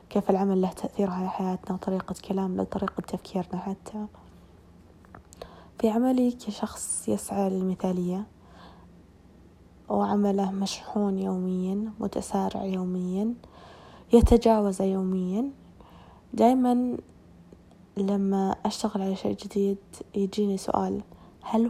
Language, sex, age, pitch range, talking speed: Arabic, female, 20-39, 185-215 Hz, 85 wpm